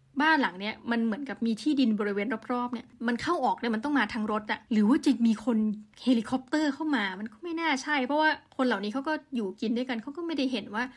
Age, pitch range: 20-39, 220-260 Hz